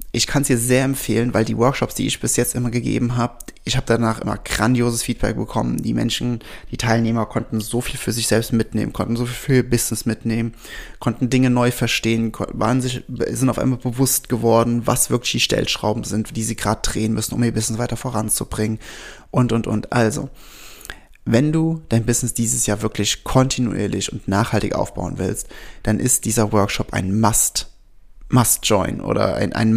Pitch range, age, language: 110-125 Hz, 20-39, German